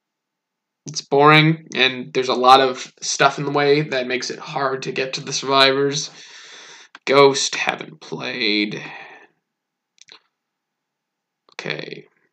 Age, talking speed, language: 20-39, 115 wpm, English